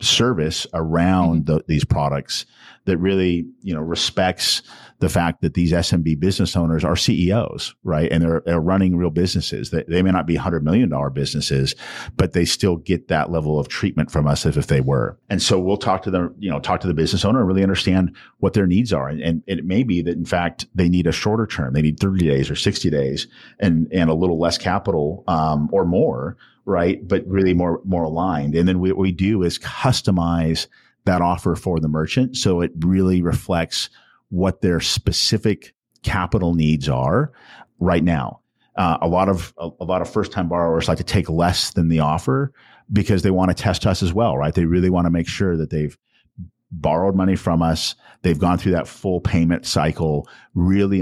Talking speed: 205 wpm